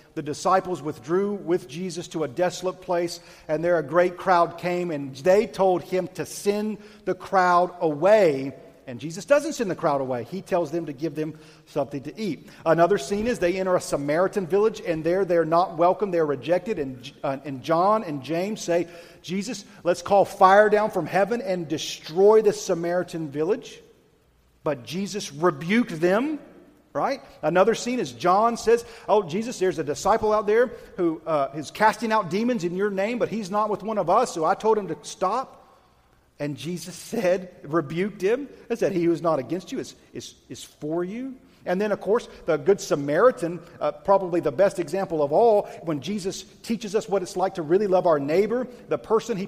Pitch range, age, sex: 155-205 Hz, 40-59, male